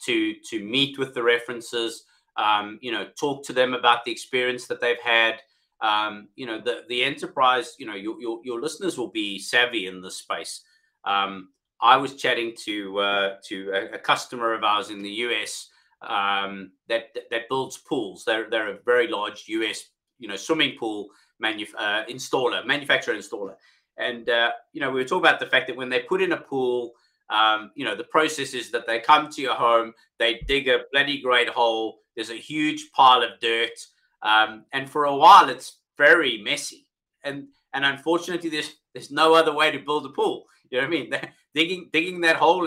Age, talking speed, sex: 30-49, 200 wpm, male